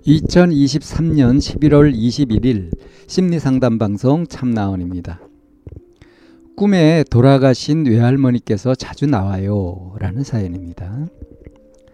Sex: male